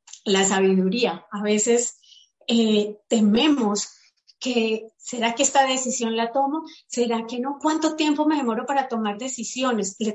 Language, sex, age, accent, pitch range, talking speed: Spanish, female, 30-49, Colombian, 210-270 Hz, 140 wpm